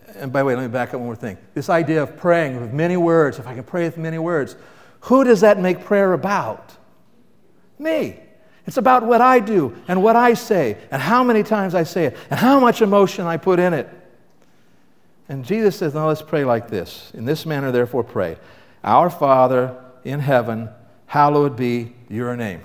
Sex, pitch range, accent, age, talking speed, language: male, 130-185 Hz, American, 60-79, 205 wpm, English